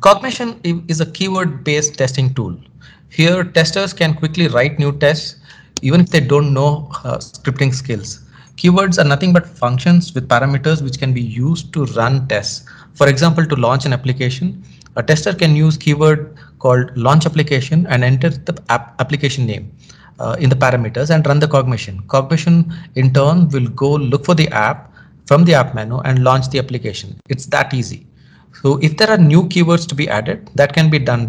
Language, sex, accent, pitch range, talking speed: English, male, Indian, 130-165 Hz, 180 wpm